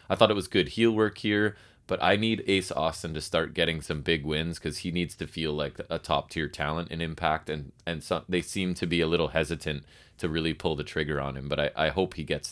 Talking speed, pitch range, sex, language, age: 250 wpm, 80-100 Hz, male, English, 20-39